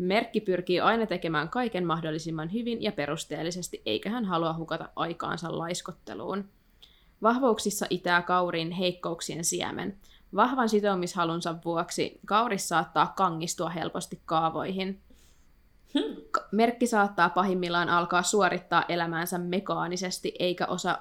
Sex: female